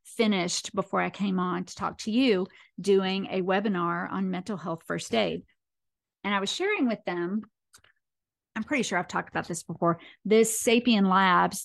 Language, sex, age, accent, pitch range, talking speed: English, female, 40-59, American, 180-220 Hz, 175 wpm